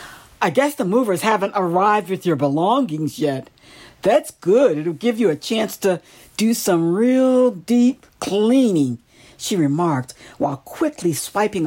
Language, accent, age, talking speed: English, American, 60-79, 145 wpm